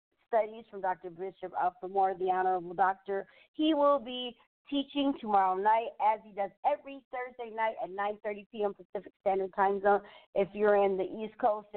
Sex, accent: female, American